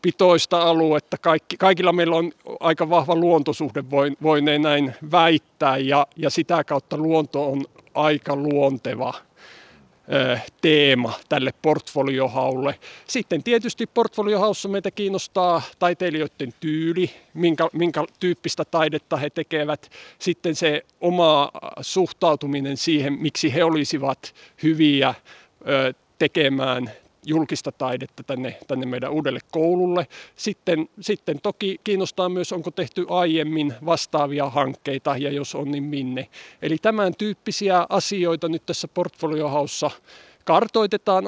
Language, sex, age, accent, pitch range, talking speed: Finnish, male, 50-69, native, 140-175 Hz, 110 wpm